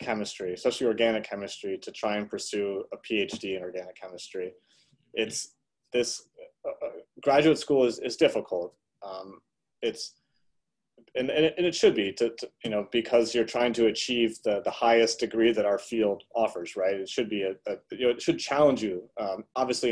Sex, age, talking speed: male, 30-49, 180 wpm